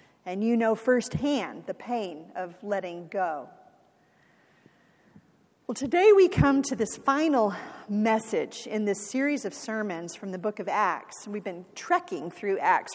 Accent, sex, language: American, female, English